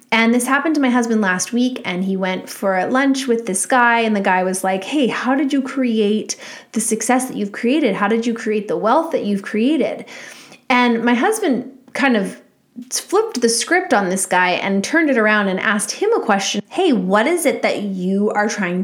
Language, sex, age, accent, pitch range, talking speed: English, female, 20-39, American, 200-260 Hz, 215 wpm